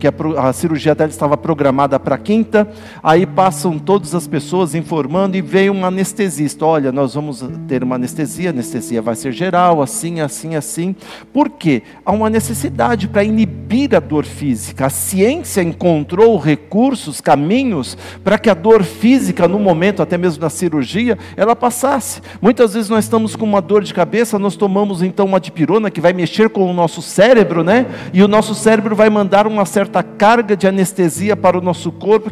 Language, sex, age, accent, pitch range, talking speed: Portuguese, male, 50-69, Brazilian, 155-215 Hz, 180 wpm